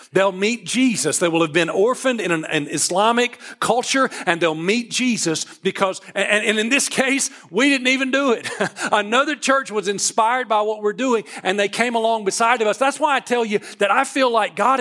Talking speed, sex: 215 wpm, male